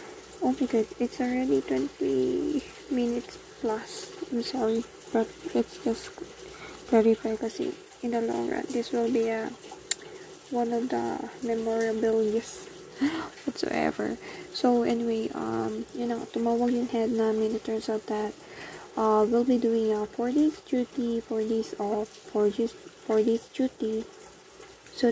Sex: female